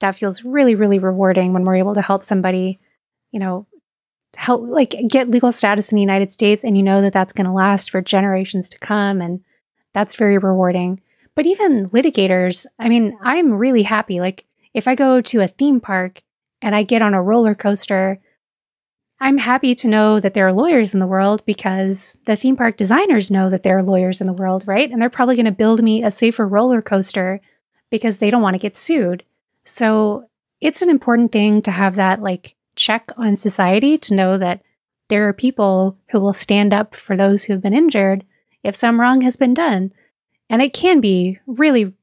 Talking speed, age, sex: 205 wpm, 30-49, female